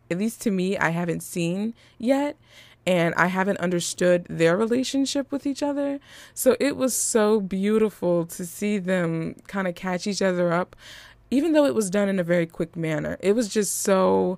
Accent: American